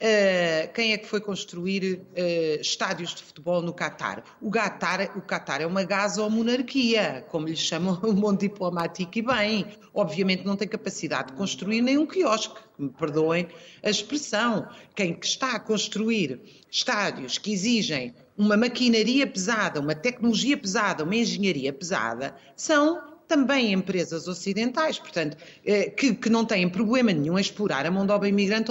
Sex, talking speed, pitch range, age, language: female, 150 wpm, 180-235 Hz, 40-59, Portuguese